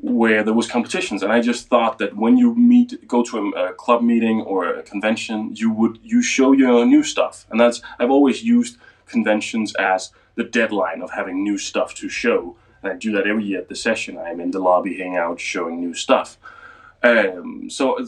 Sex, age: male, 20-39